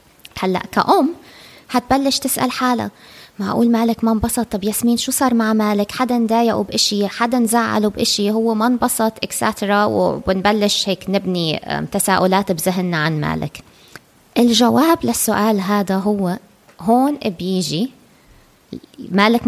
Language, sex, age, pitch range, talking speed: Arabic, female, 20-39, 185-235 Hz, 120 wpm